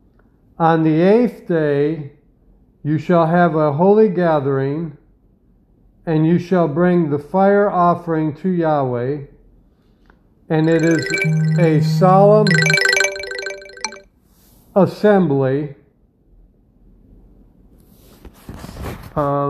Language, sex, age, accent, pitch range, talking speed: English, male, 50-69, American, 145-190 Hz, 80 wpm